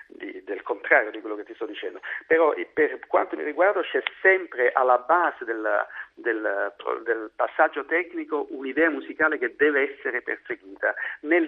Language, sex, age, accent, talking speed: Italian, male, 50-69, native, 145 wpm